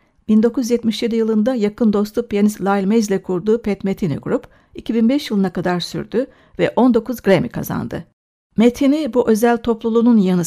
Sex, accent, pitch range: female, native, 200-240 Hz